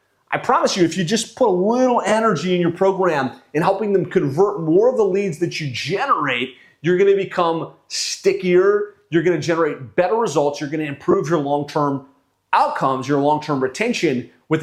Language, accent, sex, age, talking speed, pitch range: English, American, male, 30-49, 175 wpm, 145-195 Hz